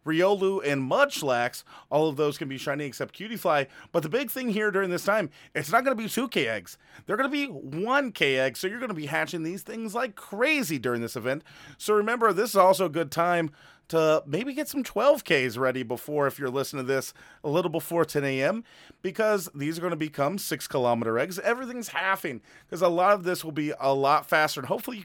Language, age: English, 30-49